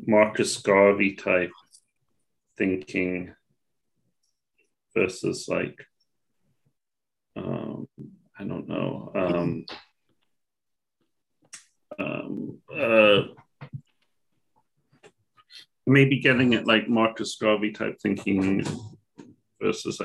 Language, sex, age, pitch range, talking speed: English, male, 40-59, 95-105 Hz, 65 wpm